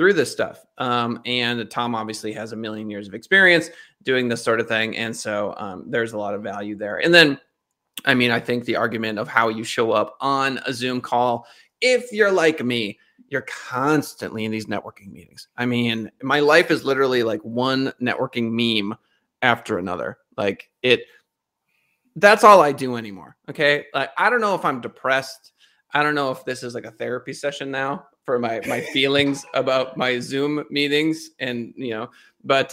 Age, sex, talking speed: 30-49, male, 190 wpm